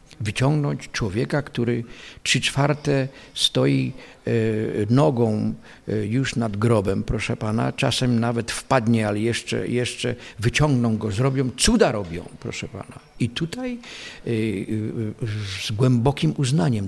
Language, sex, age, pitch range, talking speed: Polish, male, 50-69, 110-135 Hz, 105 wpm